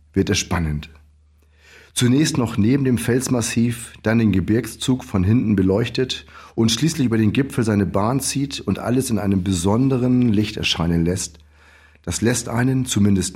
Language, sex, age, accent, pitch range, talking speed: German, male, 40-59, German, 85-115 Hz, 155 wpm